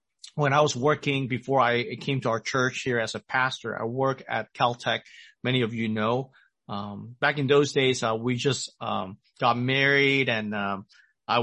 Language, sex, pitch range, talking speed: English, male, 120-145 Hz, 190 wpm